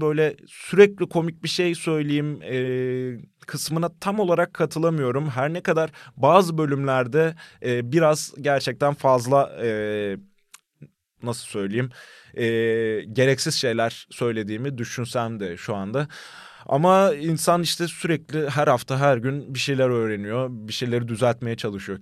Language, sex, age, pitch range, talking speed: Turkish, male, 20-39, 115-155 Hz, 125 wpm